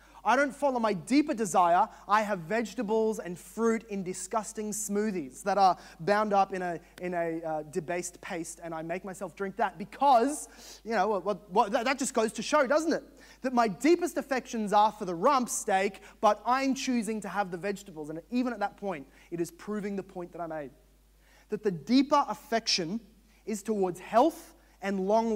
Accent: Australian